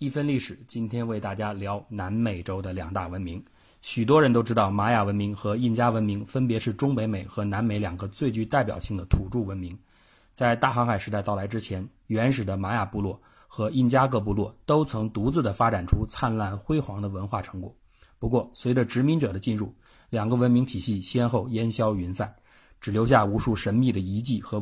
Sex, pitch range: male, 100-125 Hz